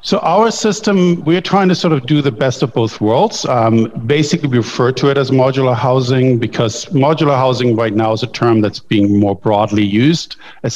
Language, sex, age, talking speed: English, male, 50-69, 205 wpm